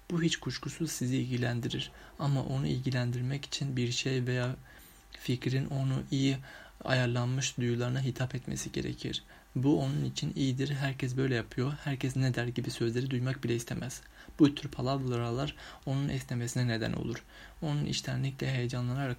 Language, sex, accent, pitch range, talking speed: Turkish, male, native, 120-140 Hz, 140 wpm